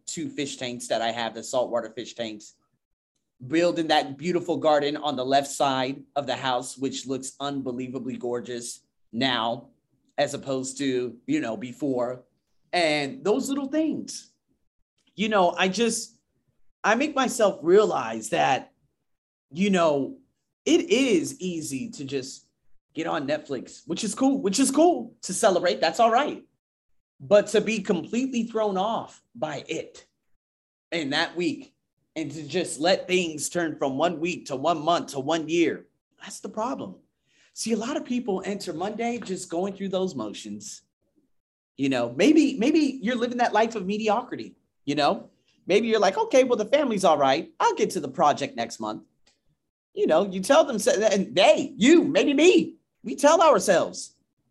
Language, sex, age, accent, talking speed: English, male, 30-49, American, 165 wpm